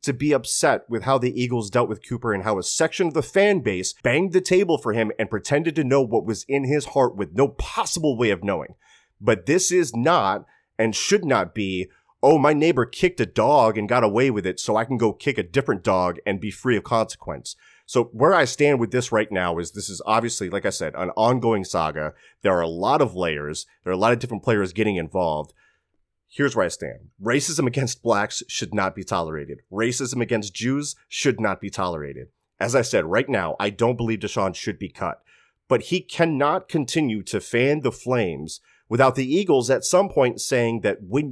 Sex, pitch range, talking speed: male, 105-145 Hz, 220 wpm